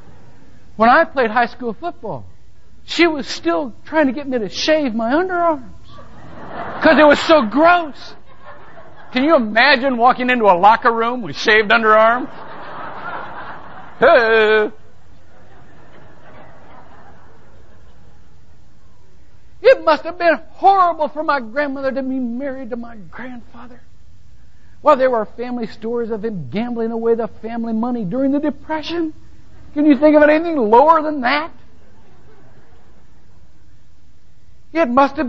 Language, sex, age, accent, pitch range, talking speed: English, male, 60-79, American, 225-300 Hz, 125 wpm